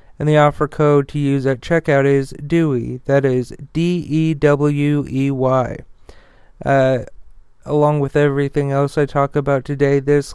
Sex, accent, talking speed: male, American, 130 wpm